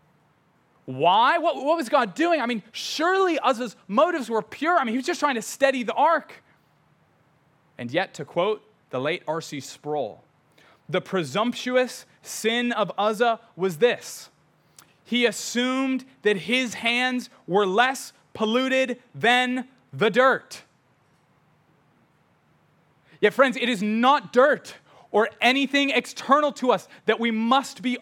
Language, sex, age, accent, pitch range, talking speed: English, male, 30-49, American, 170-255 Hz, 135 wpm